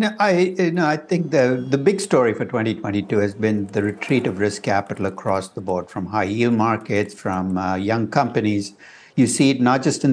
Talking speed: 215 wpm